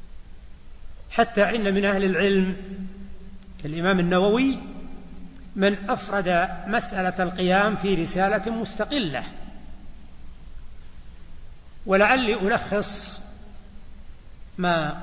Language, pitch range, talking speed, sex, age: Arabic, 185-220 Hz, 70 wpm, male, 60-79